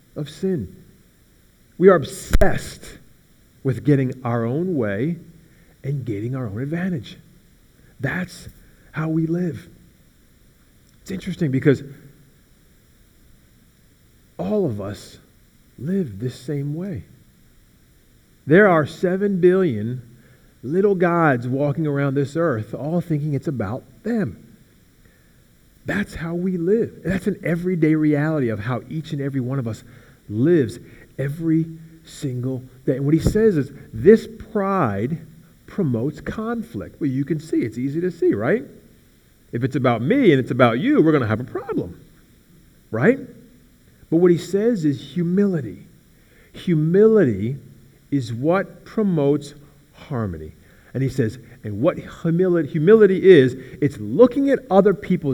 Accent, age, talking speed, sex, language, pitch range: American, 40-59, 130 wpm, male, English, 130-180 Hz